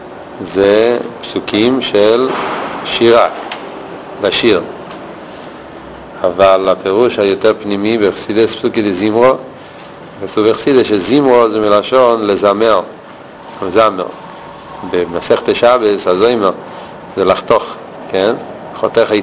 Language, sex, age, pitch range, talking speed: Hebrew, male, 50-69, 95-120 Hz, 80 wpm